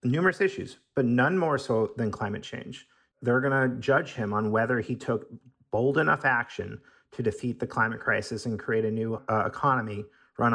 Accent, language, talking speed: American, English, 190 wpm